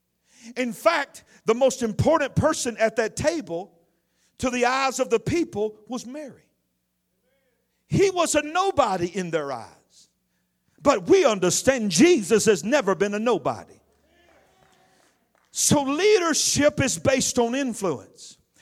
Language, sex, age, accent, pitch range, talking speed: English, male, 50-69, American, 230-300 Hz, 125 wpm